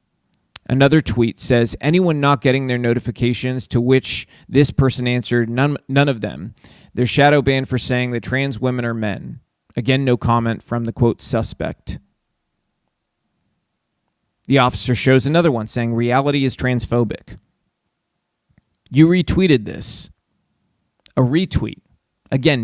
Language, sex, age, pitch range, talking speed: English, male, 30-49, 115-140 Hz, 130 wpm